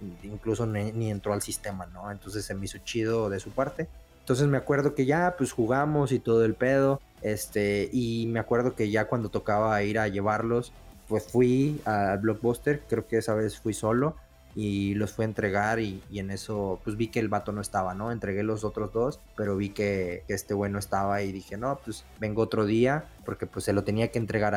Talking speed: 215 wpm